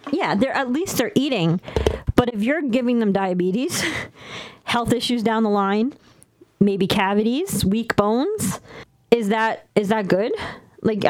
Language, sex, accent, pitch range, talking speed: English, female, American, 190-240 Hz, 145 wpm